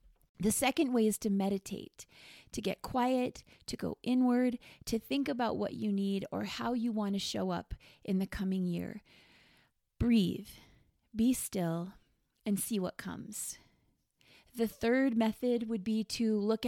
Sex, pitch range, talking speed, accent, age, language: female, 205-255 Hz, 155 wpm, American, 30-49, English